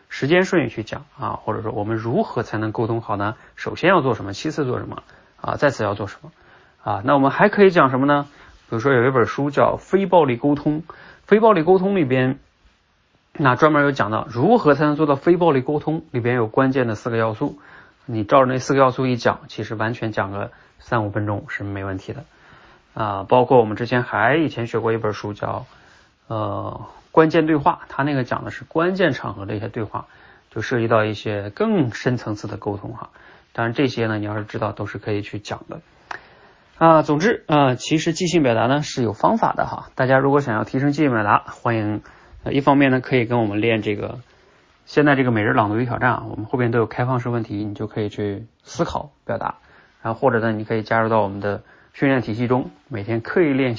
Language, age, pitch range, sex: Chinese, 20-39, 110-140 Hz, male